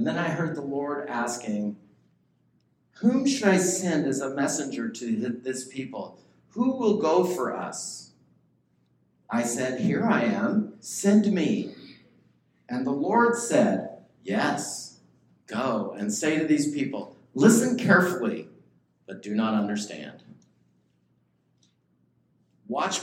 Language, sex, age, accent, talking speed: English, male, 50-69, American, 120 wpm